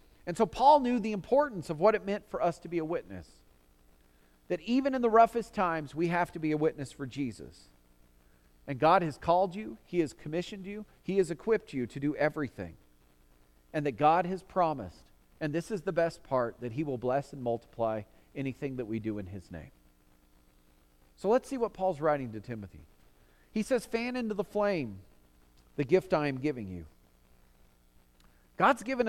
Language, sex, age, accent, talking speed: English, male, 40-59, American, 190 wpm